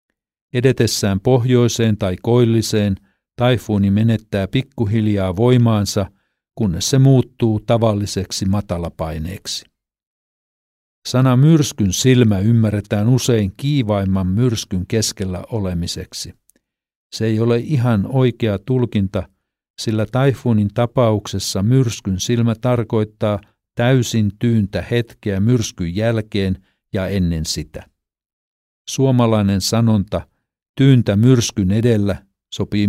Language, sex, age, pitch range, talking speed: Finnish, male, 50-69, 95-120 Hz, 90 wpm